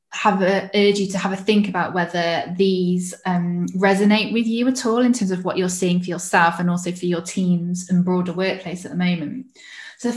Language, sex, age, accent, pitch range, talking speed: English, female, 20-39, British, 180-205 Hz, 225 wpm